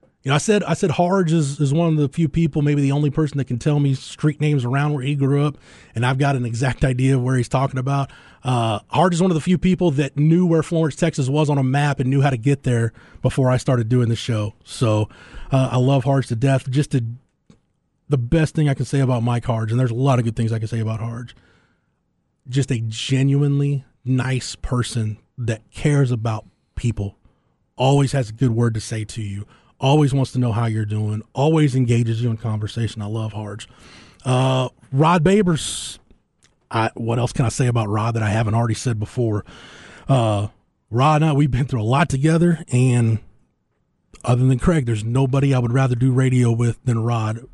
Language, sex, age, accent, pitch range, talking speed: English, male, 20-39, American, 115-140 Hz, 215 wpm